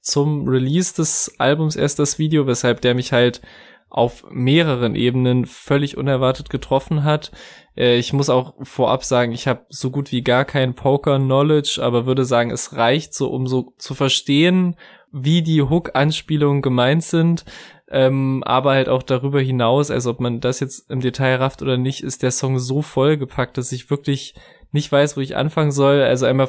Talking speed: 180 wpm